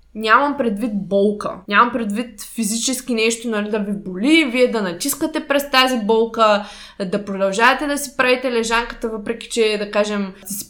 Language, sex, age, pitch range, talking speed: Bulgarian, female, 20-39, 200-250 Hz, 165 wpm